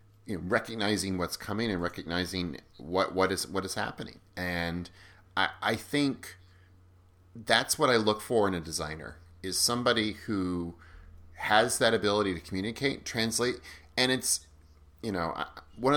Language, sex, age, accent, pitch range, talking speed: English, male, 30-49, American, 85-110 Hz, 145 wpm